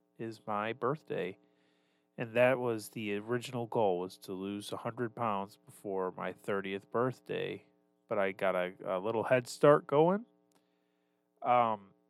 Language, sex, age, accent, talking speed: English, male, 30-49, American, 140 wpm